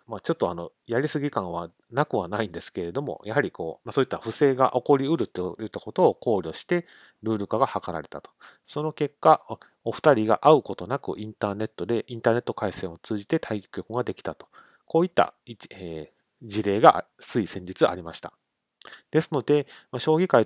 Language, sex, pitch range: Japanese, male, 100-130 Hz